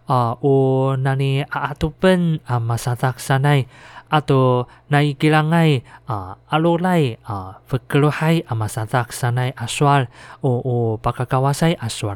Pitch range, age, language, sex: 120-145 Hz, 20-39, Chinese, male